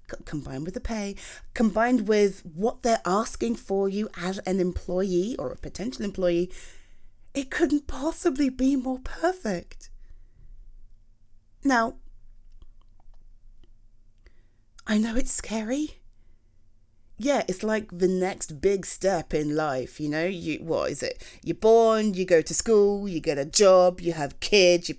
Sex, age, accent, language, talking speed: female, 30-49, British, English, 140 wpm